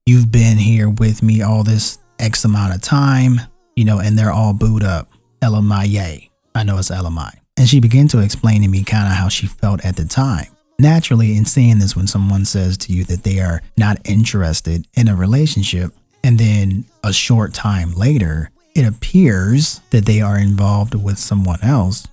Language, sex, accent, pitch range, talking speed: English, male, American, 100-130 Hz, 195 wpm